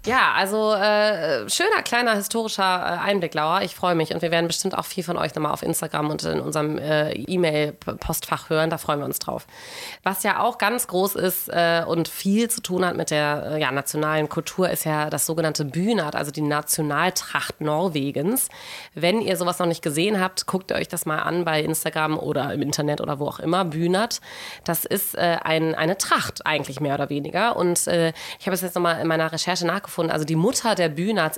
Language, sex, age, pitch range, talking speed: German, female, 20-39, 155-185 Hz, 205 wpm